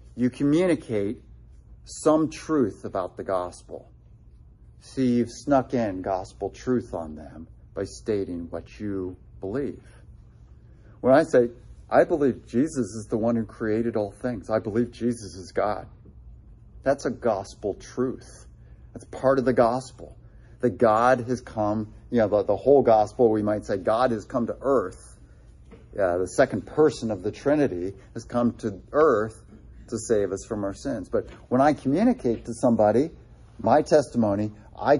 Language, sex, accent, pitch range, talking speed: English, male, American, 105-145 Hz, 155 wpm